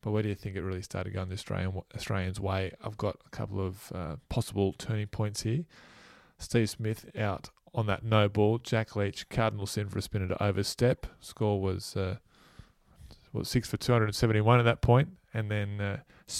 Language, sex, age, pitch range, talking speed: English, male, 20-39, 95-115 Hz, 190 wpm